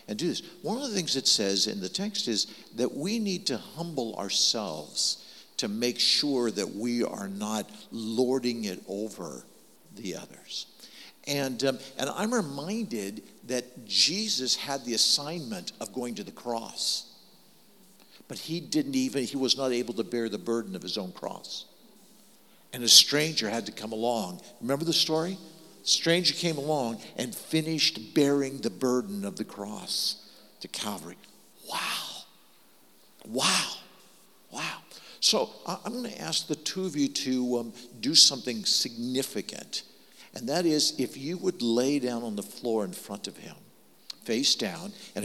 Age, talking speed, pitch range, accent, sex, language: 60-79, 160 wpm, 115-170 Hz, American, male, English